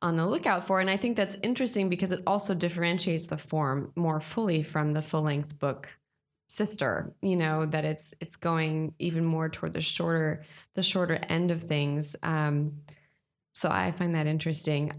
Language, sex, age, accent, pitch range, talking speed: English, female, 20-39, American, 155-190 Hz, 180 wpm